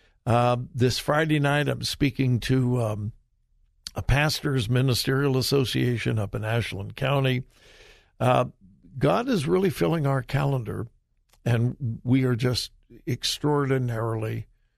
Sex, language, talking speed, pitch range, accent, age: male, English, 115 wpm, 120-150 Hz, American, 60-79